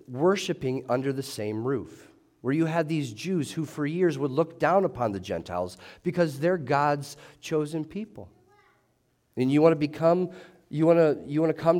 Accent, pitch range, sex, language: American, 120-160 Hz, male, English